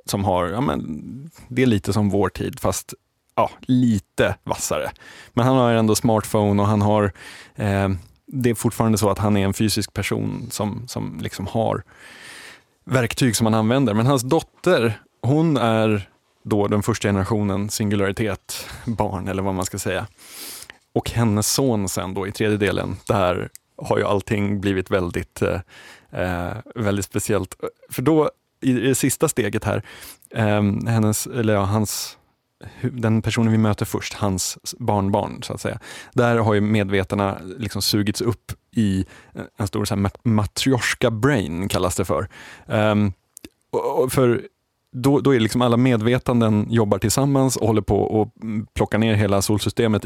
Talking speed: 155 wpm